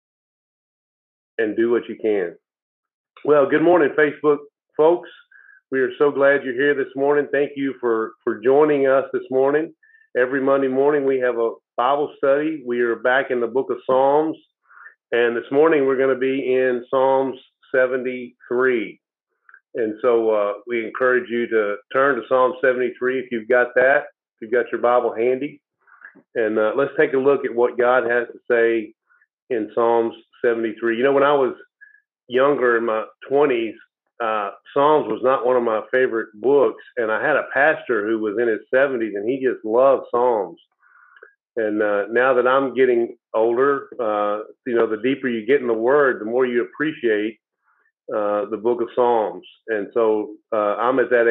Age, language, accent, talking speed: 40-59, English, American, 180 wpm